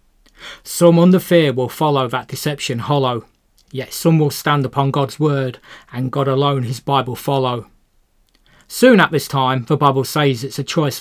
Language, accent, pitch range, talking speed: English, British, 135-160 Hz, 170 wpm